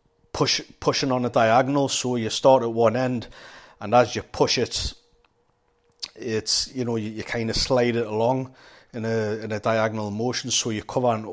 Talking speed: 190 wpm